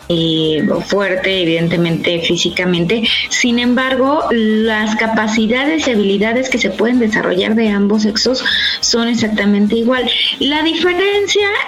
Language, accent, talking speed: Spanish, Mexican, 110 wpm